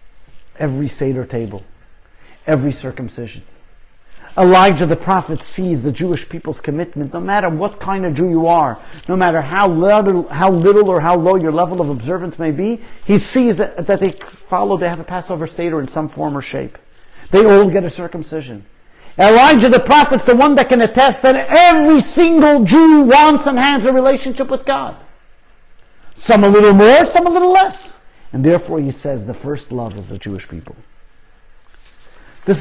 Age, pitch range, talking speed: 50-69, 140-210 Hz, 170 wpm